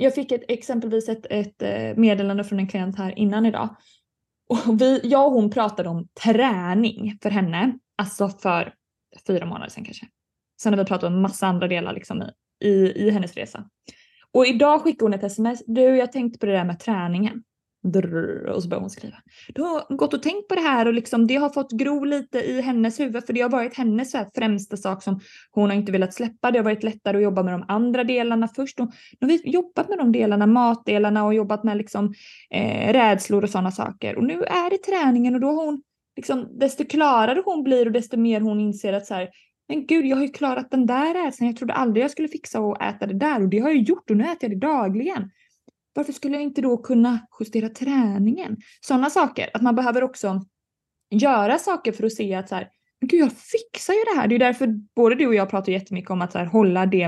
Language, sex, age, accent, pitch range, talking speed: Swedish, female, 20-39, native, 200-260 Hz, 230 wpm